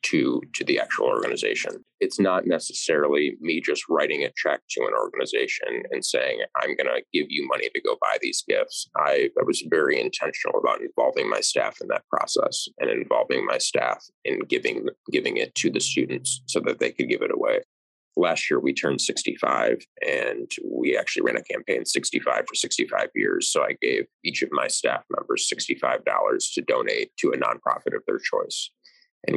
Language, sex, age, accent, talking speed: English, male, 20-39, American, 185 wpm